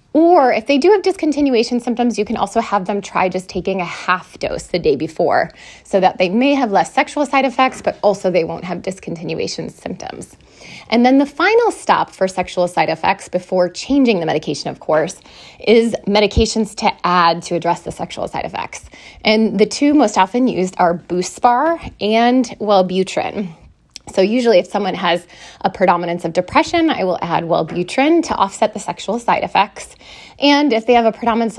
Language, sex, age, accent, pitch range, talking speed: English, female, 20-39, American, 180-245 Hz, 185 wpm